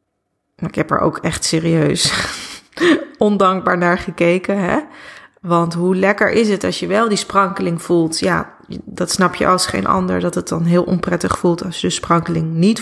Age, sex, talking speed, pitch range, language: 30-49, female, 185 wpm, 175-220 Hz, Dutch